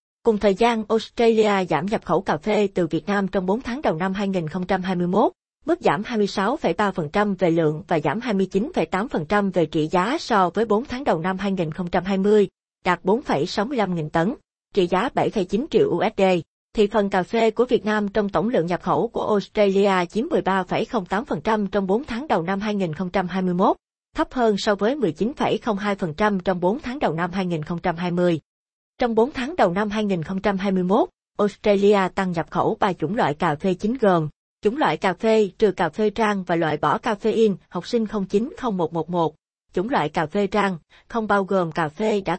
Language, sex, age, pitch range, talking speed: Vietnamese, female, 20-39, 180-215 Hz, 175 wpm